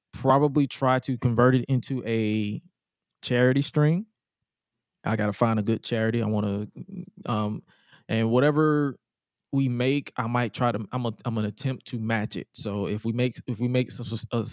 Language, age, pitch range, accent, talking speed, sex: English, 20-39, 110-130 Hz, American, 180 wpm, male